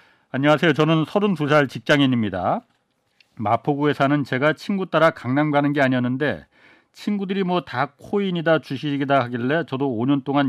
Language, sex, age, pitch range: Korean, male, 40-59, 125-160 Hz